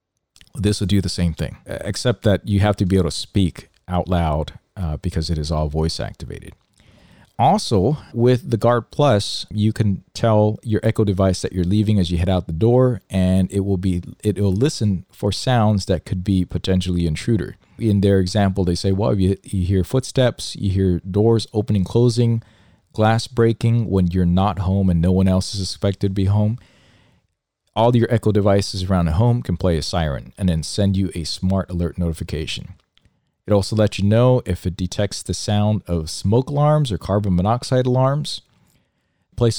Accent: American